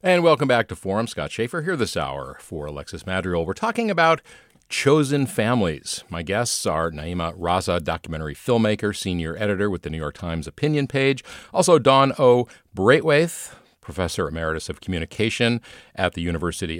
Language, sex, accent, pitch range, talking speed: English, male, American, 90-135 Hz, 160 wpm